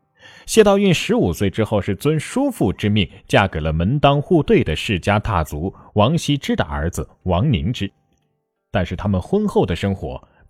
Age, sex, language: 30-49, male, Chinese